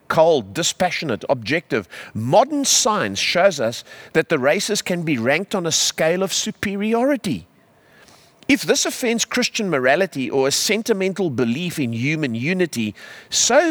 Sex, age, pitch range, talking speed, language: male, 50-69, 125-200 Hz, 135 wpm, English